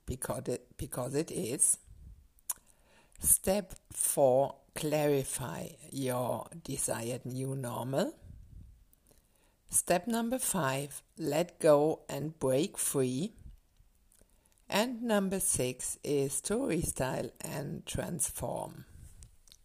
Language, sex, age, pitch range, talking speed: English, female, 60-79, 130-165 Hz, 85 wpm